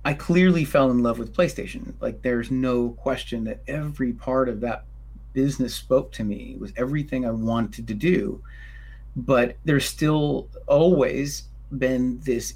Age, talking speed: 30-49, 160 wpm